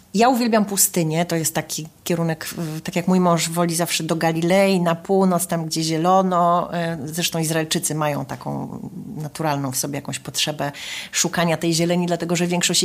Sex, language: female, Polish